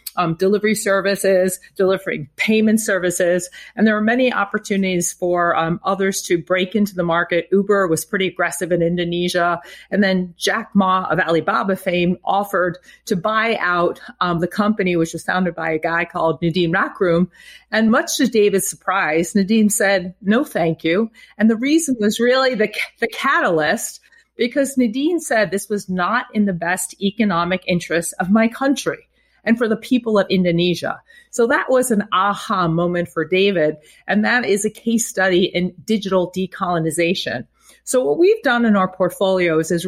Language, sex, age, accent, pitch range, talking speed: English, female, 40-59, American, 175-220 Hz, 165 wpm